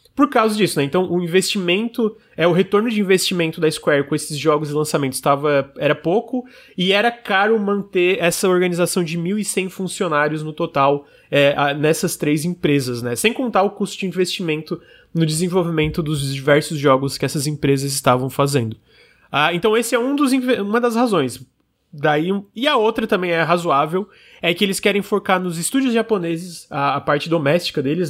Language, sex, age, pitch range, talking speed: Portuguese, male, 20-39, 145-190 Hz, 175 wpm